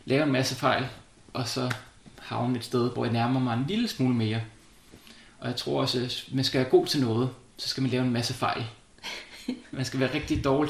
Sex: male